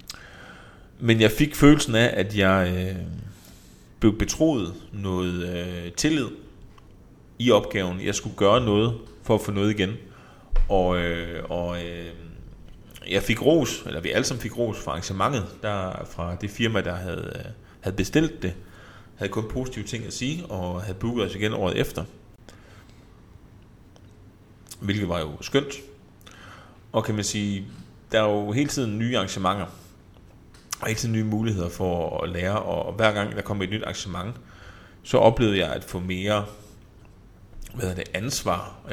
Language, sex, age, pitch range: Danish, male, 30-49, 95-115 Hz